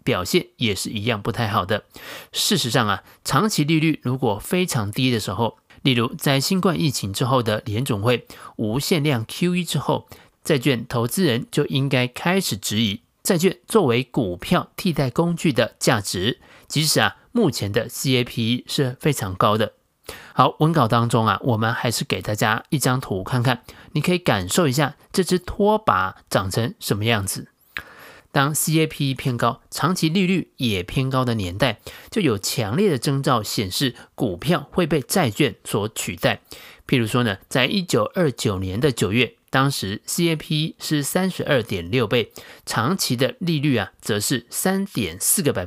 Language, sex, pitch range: Chinese, male, 115-155 Hz